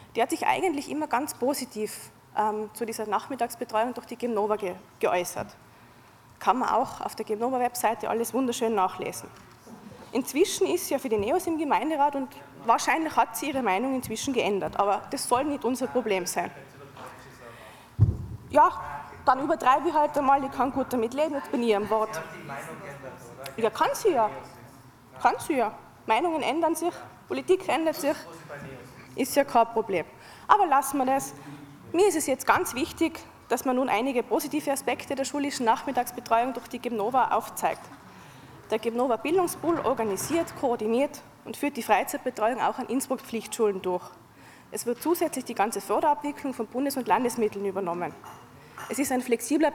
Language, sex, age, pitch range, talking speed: German, female, 20-39, 210-280 Hz, 160 wpm